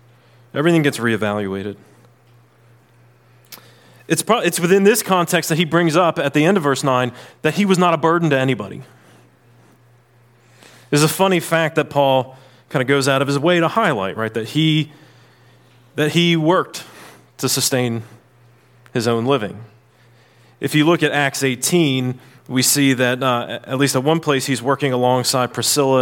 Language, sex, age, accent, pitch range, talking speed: English, male, 30-49, American, 120-155 Hz, 175 wpm